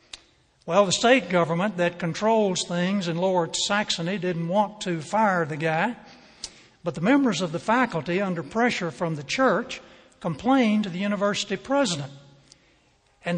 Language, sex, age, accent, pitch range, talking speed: English, male, 60-79, American, 175-235 Hz, 150 wpm